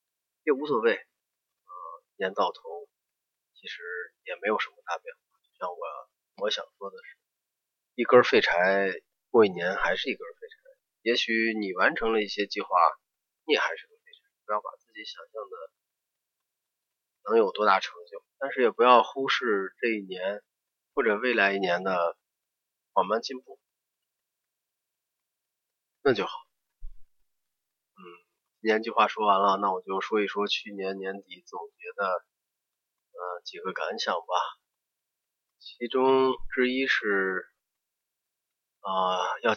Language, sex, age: Chinese, male, 30-49